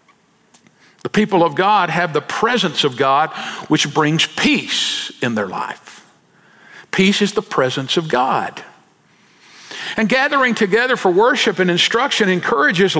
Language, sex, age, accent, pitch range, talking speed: English, male, 50-69, American, 170-255 Hz, 135 wpm